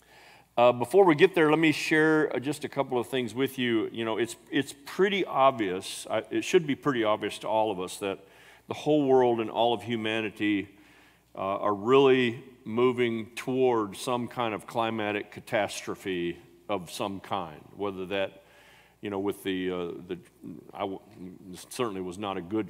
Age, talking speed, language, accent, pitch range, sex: 50-69, 175 wpm, English, American, 95-120 Hz, male